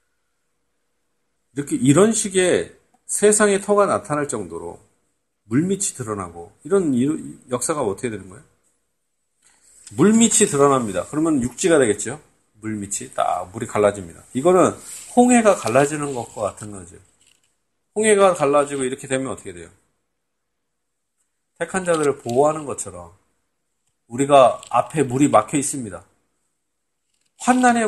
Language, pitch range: Korean, 110-170 Hz